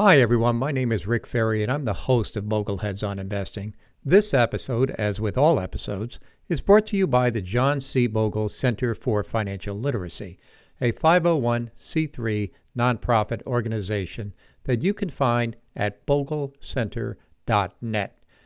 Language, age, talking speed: English, 60-79, 145 wpm